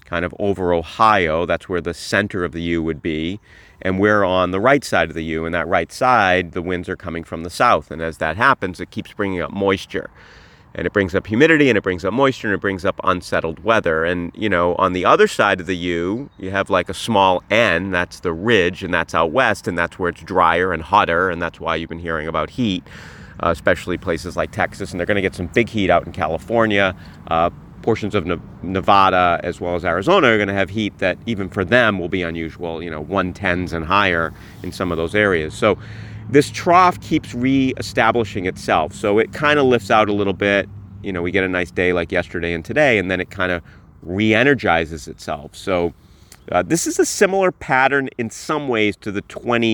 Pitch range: 85-110 Hz